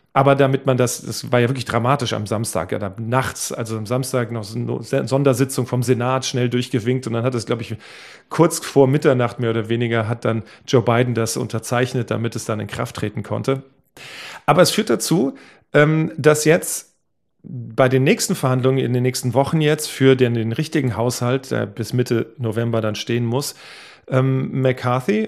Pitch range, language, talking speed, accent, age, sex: 115-140 Hz, German, 175 wpm, German, 40-59, male